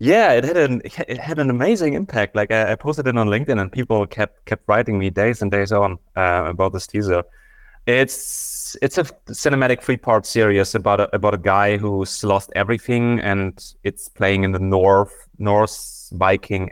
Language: English